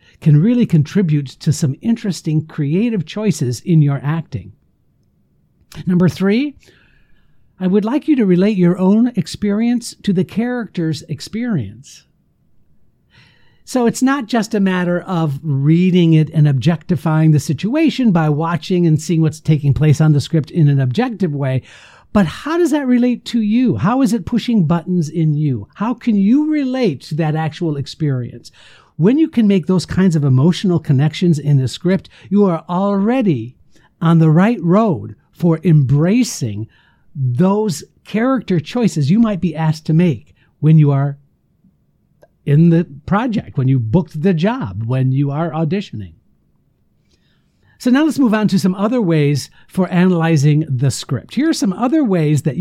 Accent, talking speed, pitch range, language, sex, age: American, 160 wpm, 150-210 Hz, English, male, 60-79